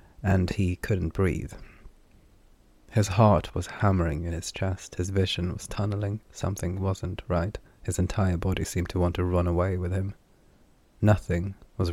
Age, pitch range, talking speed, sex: 30-49, 85-100 Hz, 155 wpm, male